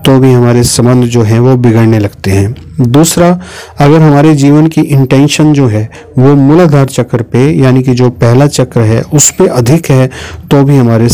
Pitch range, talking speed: 120-150 Hz, 190 wpm